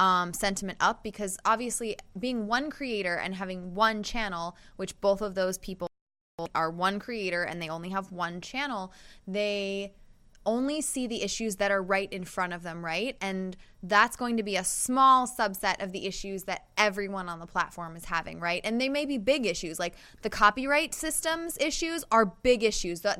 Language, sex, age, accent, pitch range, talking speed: English, female, 20-39, American, 195-240 Hz, 190 wpm